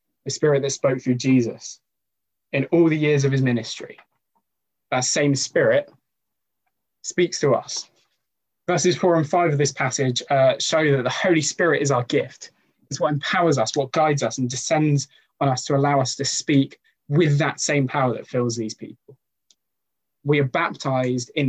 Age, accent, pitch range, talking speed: 20-39, British, 125-155 Hz, 175 wpm